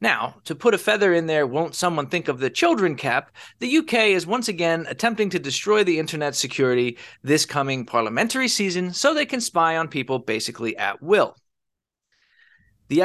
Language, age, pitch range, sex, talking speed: English, 20-39, 130-210 Hz, male, 180 wpm